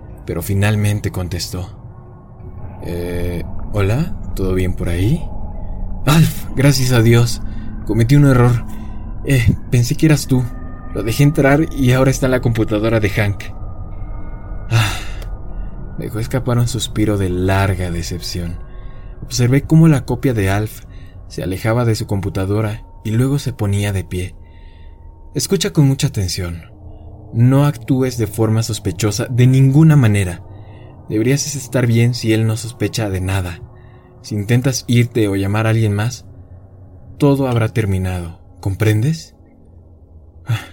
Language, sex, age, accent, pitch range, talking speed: Spanish, male, 20-39, Mexican, 95-120 Hz, 135 wpm